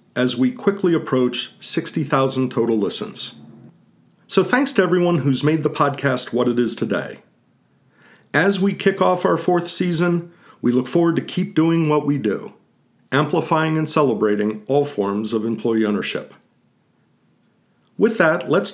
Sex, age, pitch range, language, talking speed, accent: male, 50-69, 125-170 Hz, English, 145 wpm, American